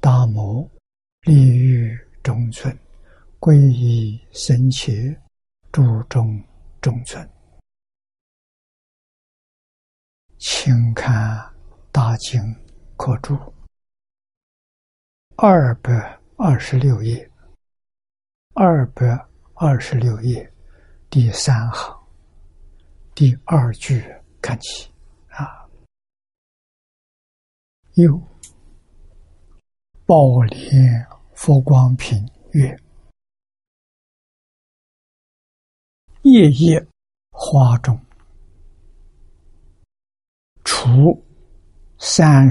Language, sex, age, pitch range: Chinese, male, 60-79, 80-135 Hz